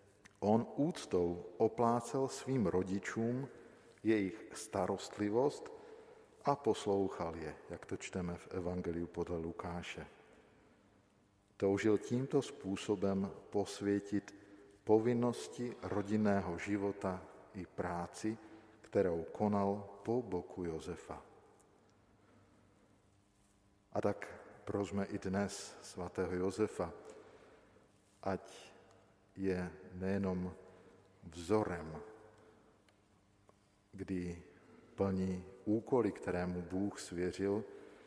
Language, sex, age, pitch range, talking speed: Slovak, male, 50-69, 95-105 Hz, 75 wpm